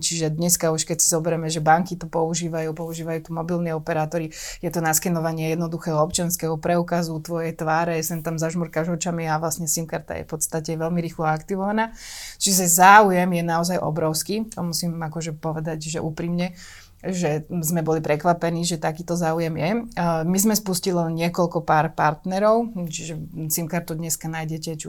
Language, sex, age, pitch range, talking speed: Slovak, female, 20-39, 160-175 Hz, 155 wpm